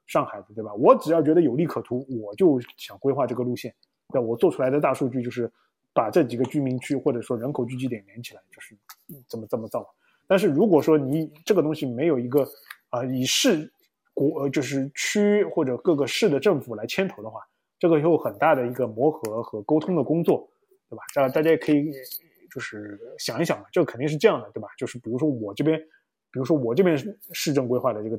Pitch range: 125-155 Hz